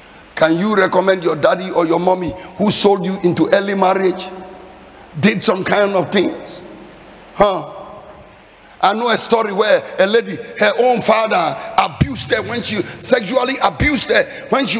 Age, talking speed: 50-69, 160 wpm